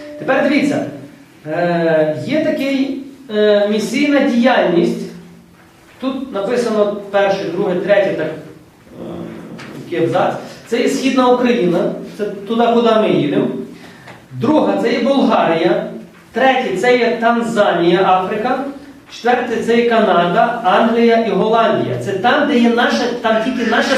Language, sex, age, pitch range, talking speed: Ukrainian, male, 40-59, 195-255 Hz, 125 wpm